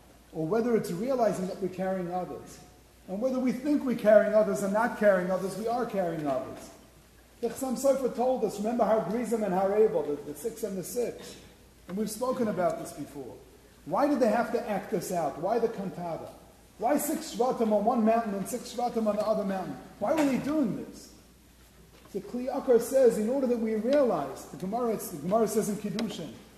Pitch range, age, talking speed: 180-230 Hz, 40-59, 200 wpm